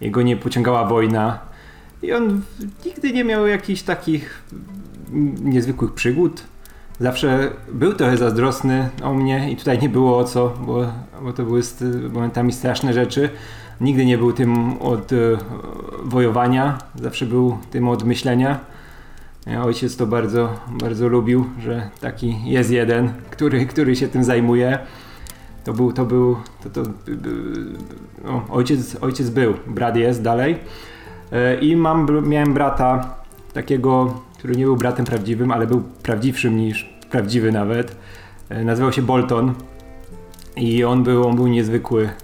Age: 20-39